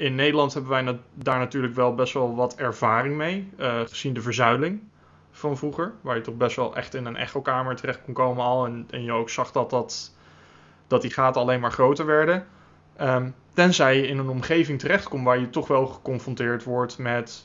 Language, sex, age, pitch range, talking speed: Dutch, male, 20-39, 120-155 Hz, 210 wpm